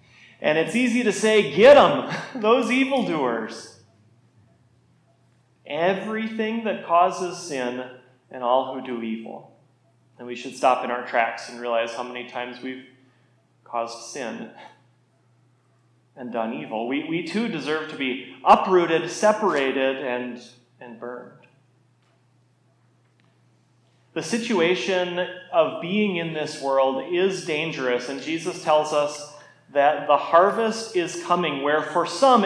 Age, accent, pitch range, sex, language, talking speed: 30-49, American, 125-210 Hz, male, English, 125 wpm